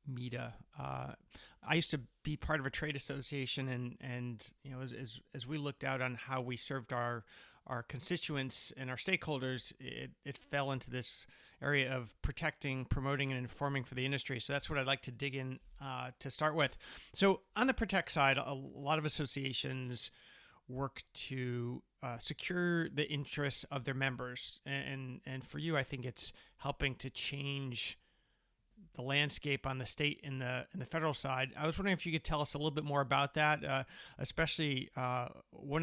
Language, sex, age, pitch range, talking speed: English, male, 30-49, 130-145 Hz, 195 wpm